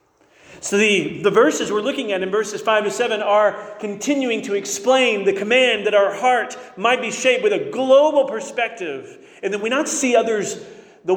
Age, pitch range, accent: 40-59, 185-275 Hz, American